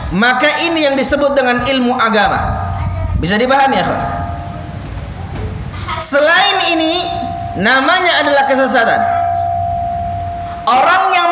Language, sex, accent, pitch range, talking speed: Indonesian, male, native, 270-350 Hz, 90 wpm